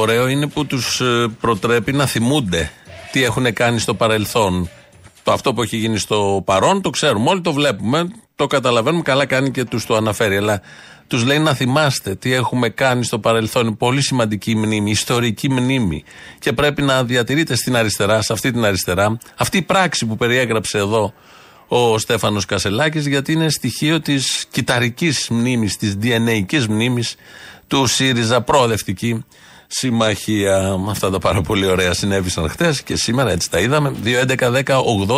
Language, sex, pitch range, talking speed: Greek, male, 105-135 Hz, 155 wpm